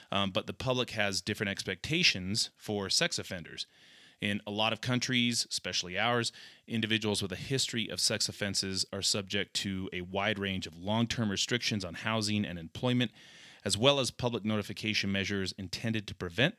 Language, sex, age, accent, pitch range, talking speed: English, male, 30-49, American, 95-115 Hz, 165 wpm